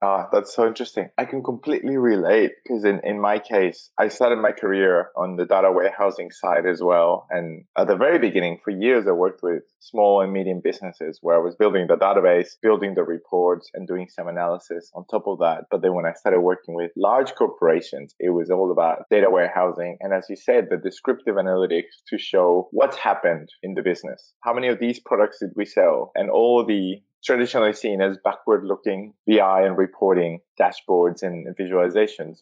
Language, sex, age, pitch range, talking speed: English, male, 20-39, 90-110 Hz, 195 wpm